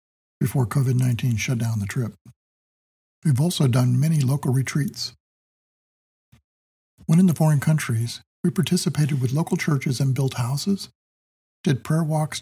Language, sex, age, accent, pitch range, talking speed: English, male, 50-69, American, 115-150 Hz, 135 wpm